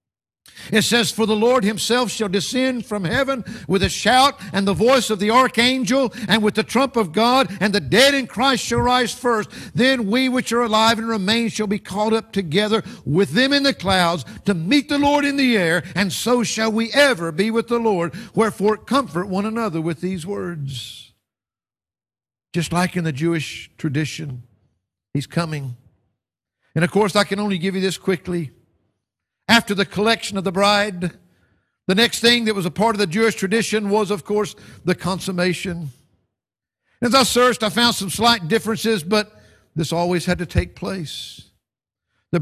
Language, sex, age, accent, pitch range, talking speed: English, male, 60-79, American, 150-225 Hz, 180 wpm